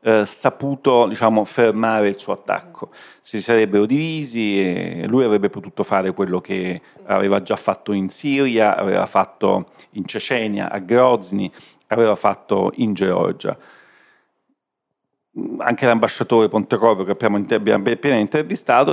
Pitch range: 105-125 Hz